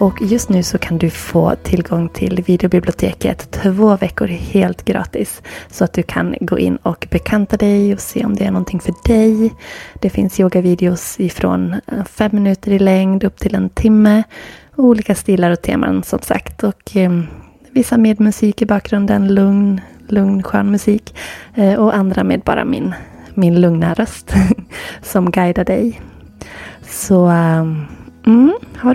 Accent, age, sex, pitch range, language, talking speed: native, 20-39, female, 175-215 Hz, Swedish, 160 wpm